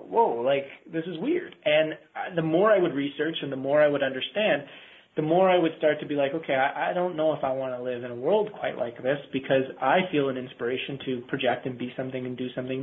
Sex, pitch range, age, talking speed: male, 130-155 Hz, 20-39, 255 wpm